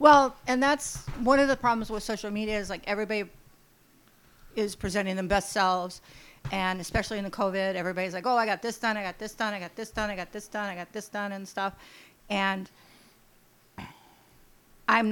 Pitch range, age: 180-210 Hz, 50-69